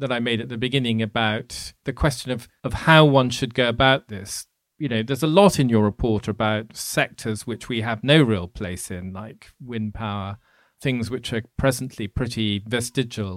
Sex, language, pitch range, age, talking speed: male, English, 110-150 Hz, 40-59, 195 wpm